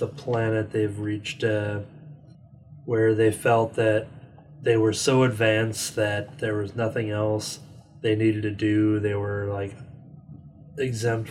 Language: English